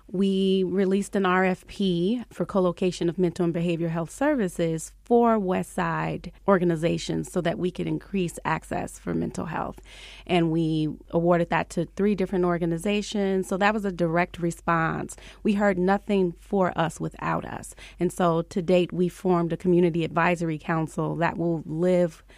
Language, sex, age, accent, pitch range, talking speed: English, female, 30-49, American, 170-195 Hz, 160 wpm